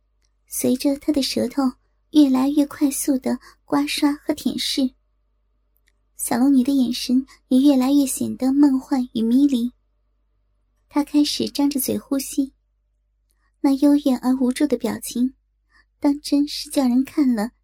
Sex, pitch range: male, 255-290 Hz